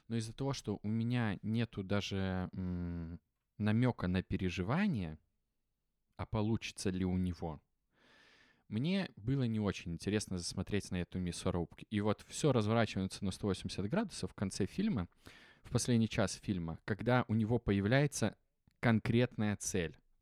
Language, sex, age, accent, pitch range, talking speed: Russian, male, 20-39, native, 95-125 Hz, 135 wpm